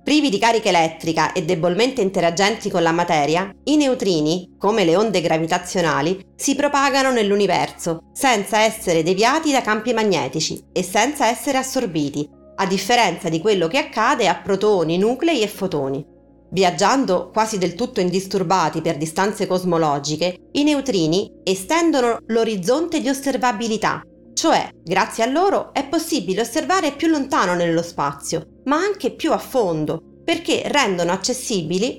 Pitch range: 170-260 Hz